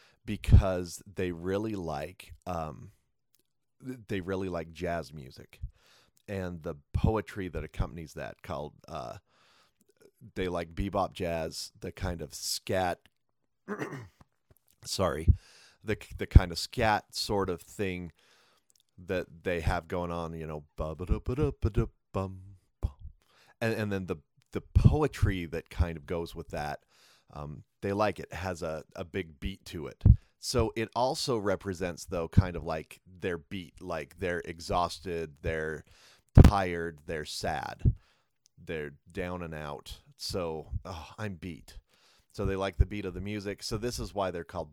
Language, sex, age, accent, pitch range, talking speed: English, male, 30-49, American, 80-100 Hz, 140 wpm